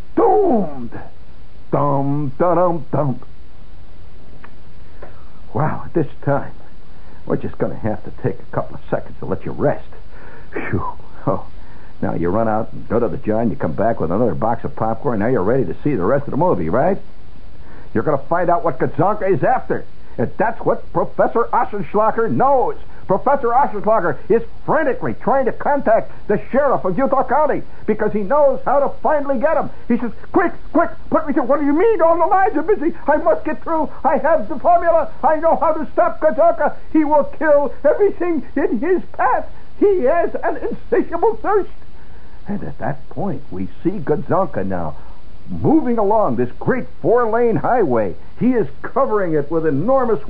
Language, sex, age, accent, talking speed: English, male, 60-79, American, 180 wpm